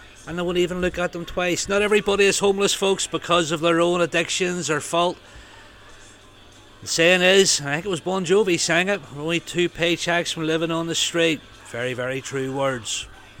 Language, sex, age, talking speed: English, male, 40-59, 195 wpm